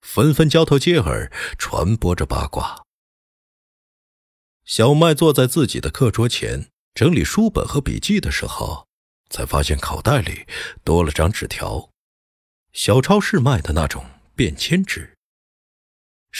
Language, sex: Chinese, male